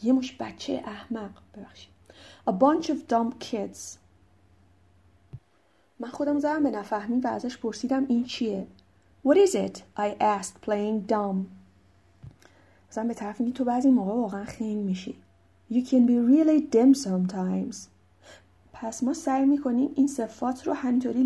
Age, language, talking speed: 30-49, Persian, 145 wpm